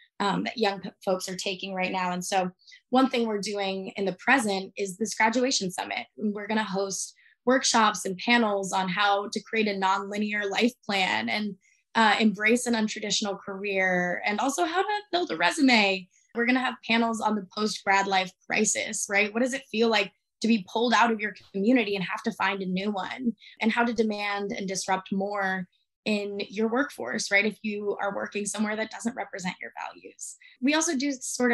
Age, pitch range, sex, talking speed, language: 20-39, 195-235 Hz, female, 200 wpm, English